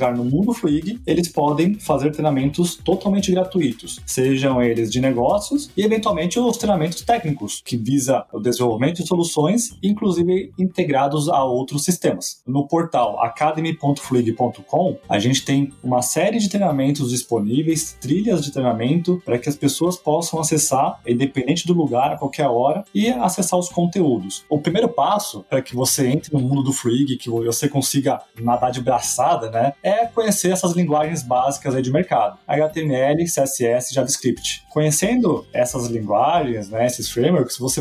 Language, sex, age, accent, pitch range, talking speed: Portuguese, male, 20-39, Brazilian, 125-175 Hz, 155 wpm